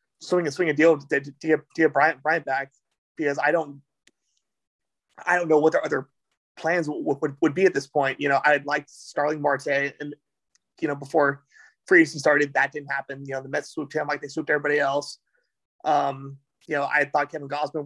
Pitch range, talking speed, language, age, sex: 135-155 Hz, 215 wpm, English, 20-39, male